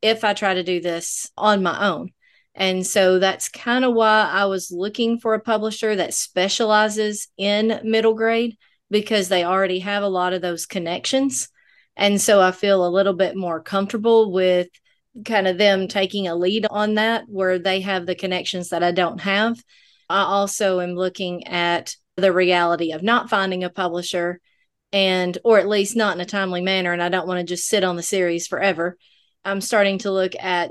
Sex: female